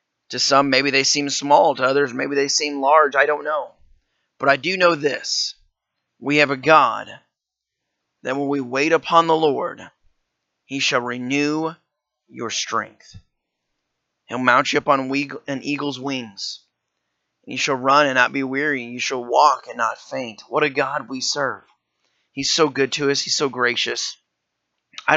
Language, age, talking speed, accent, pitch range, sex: English, 30-49, 170 wpm, American, 125-145 Hz, male